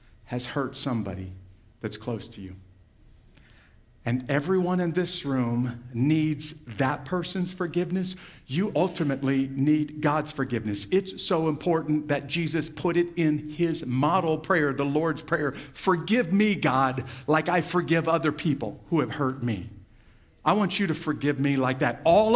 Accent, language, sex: American, English, male